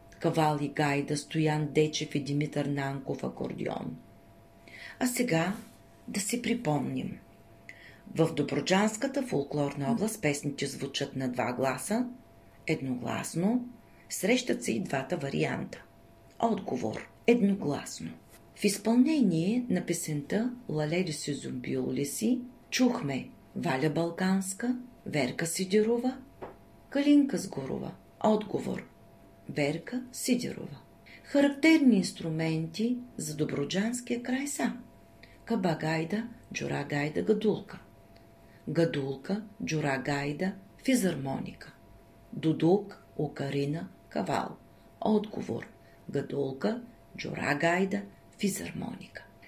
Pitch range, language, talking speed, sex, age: 140-215 Hz, Bulgarian, 80 wpm, female, 40-59